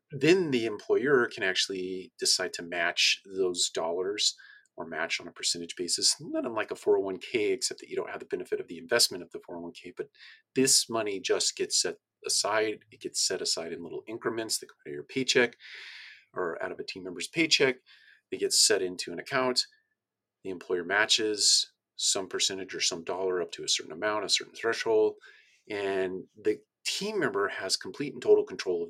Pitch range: 345-415 Hz